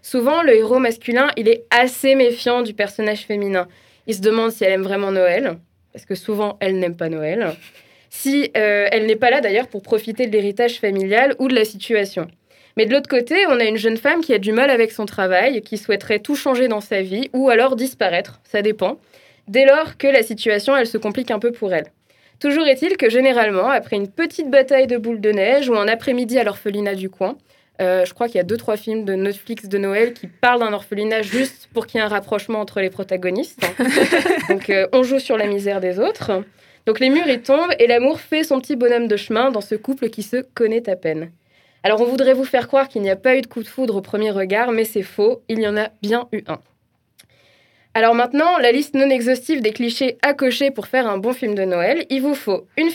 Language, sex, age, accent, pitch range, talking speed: French, female, 20-39, French, 205-260 Hz, 235 wpm